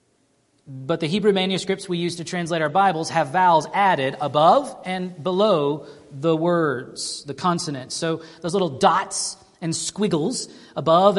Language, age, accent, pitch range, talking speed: English, 40-59, American, 140-190 Hz, 145 wpm